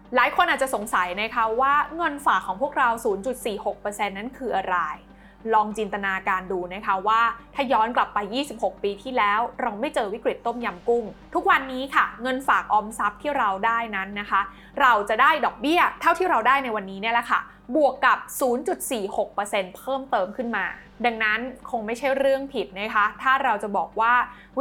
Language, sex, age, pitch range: Thai, female, 20-39, 205-270 Hz